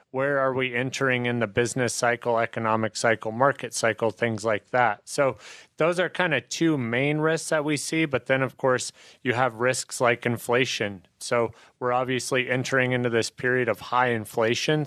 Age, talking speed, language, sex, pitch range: 30-49, 180 wpm, English, male, 115-135 Hz